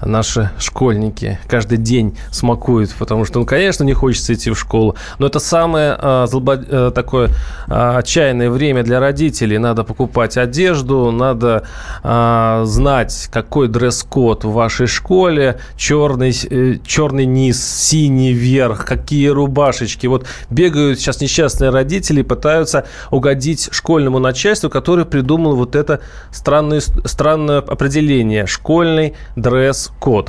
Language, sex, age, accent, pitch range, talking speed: Russian, male, 20-39, native, 120-150 Hz, 125 wpm